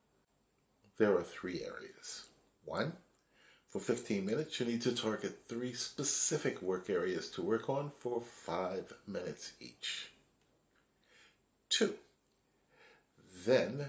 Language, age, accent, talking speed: English, 50-69, American, 110 wpm